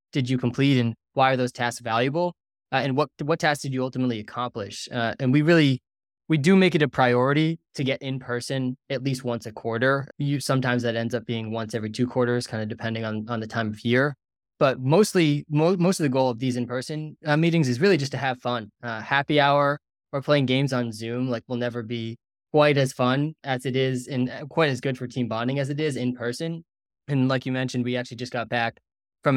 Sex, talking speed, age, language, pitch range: male, 235 wpm, 20-39, English, 120-140 Hz